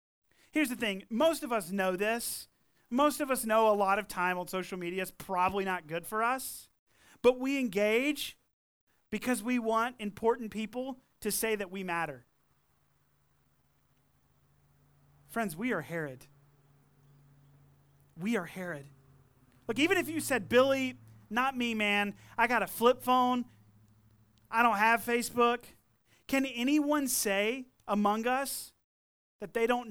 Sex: male